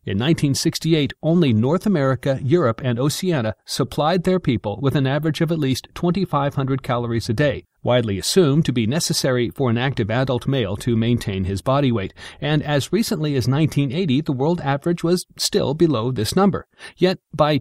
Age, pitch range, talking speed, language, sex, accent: 40-59, 120-165 Hz, 175 wpm, English, male, American